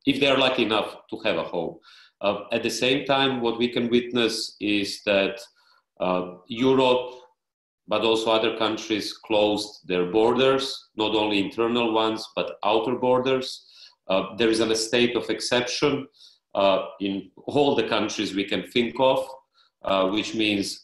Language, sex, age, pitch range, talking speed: English, male, 40-59, 100-125 Hz, 155 wpm